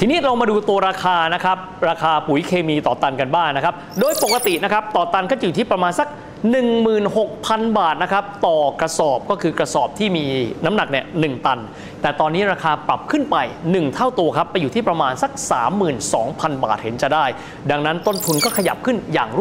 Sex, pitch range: male, 155-210 Hz